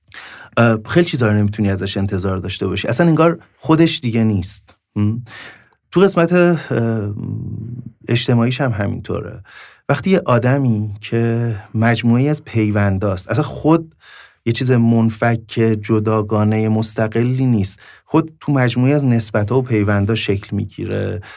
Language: English